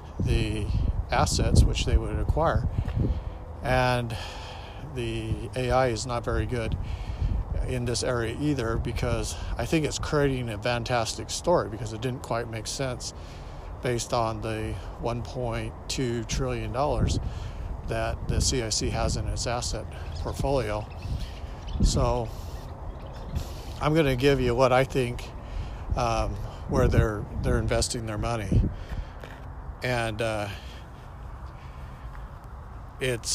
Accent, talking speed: American, 115 wpm